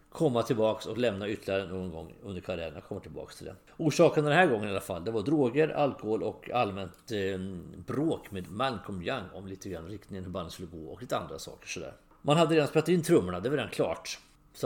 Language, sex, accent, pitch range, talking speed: English, male, Swedish, 95-135 Hz, 220 wpm